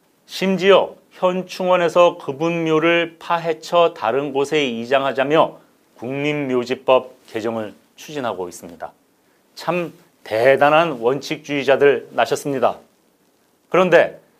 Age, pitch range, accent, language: 40-59, 135-170 Hz, native, Korean